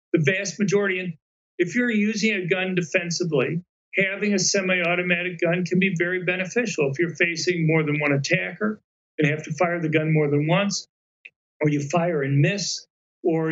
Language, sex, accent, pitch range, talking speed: English, male, American, 165-190 Hz, 180 wpm